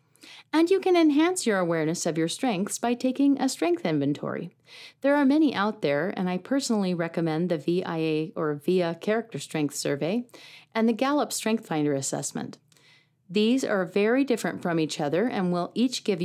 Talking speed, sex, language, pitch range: 175 wpm, female, English, 165-235 Hz